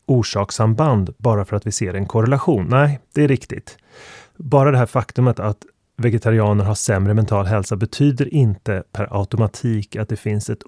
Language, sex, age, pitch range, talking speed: Swedish, male, 30-49, 105-130 Hz, 170 wpm